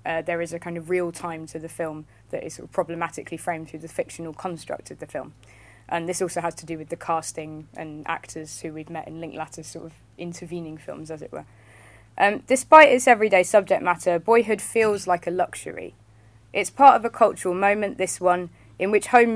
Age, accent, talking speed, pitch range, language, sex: 20-39, British, 215 wpm, 165-195 Hz, English, female